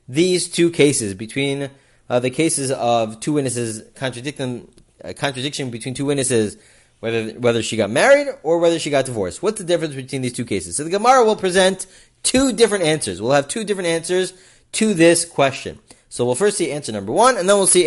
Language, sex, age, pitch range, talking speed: English, male, 30-49, 145-220 Hz, 200 wpm